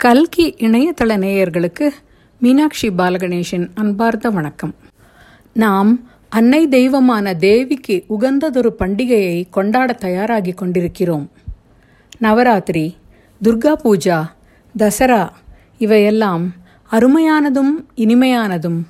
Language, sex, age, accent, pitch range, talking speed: Tamil, female, 50-69, native, 195-260 Hz, 70 wpm